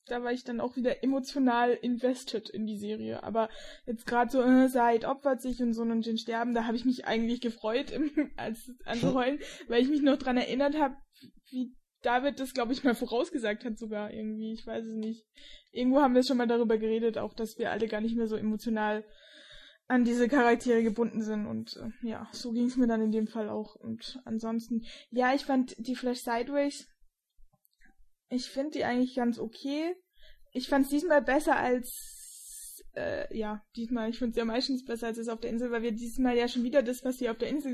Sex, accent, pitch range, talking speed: female, German, 225-260 Hz, 210 wpm